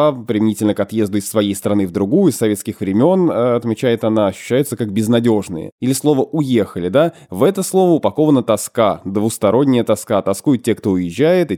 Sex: male